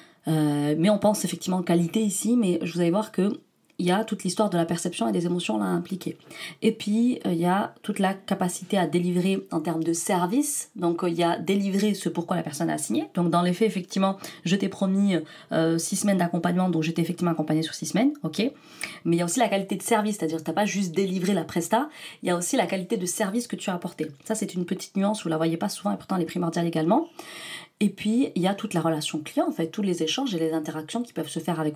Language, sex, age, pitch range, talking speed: French, female, 30-49, 165-200 Hz, 270 wpm